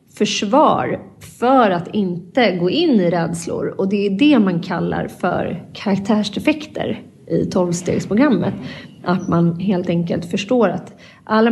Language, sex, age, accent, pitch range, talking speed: Swedish, female, 30-49, native, 175-220 Hz, 130 wpm